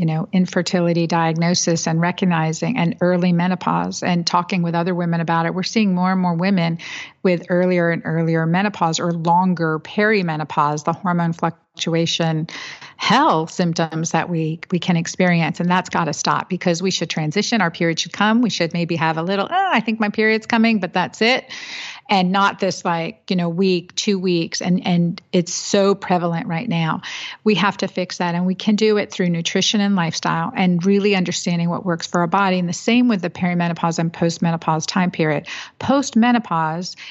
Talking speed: 190 wpm